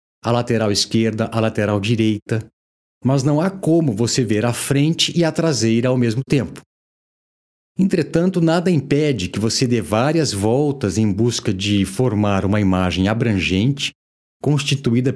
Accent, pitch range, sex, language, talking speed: Brazilian, 100-140 Hz, male, Portuguese, 145 wpm